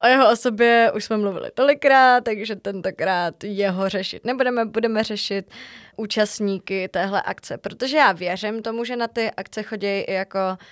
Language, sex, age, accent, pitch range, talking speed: Czech, female, 20-39, native, 190-215 Hz, 155 wpm